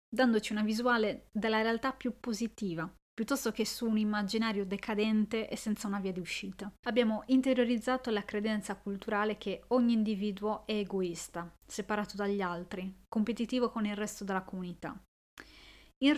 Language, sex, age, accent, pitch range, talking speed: Italian, female, 30-49, native, 200-245 Hz, 145 wpm